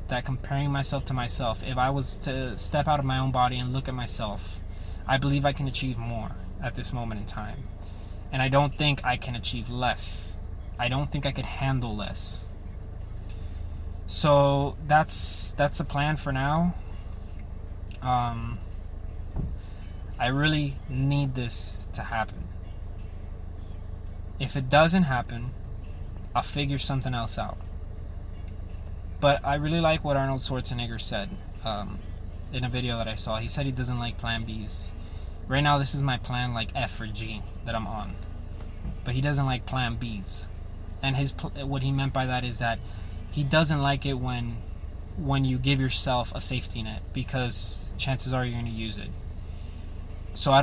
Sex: male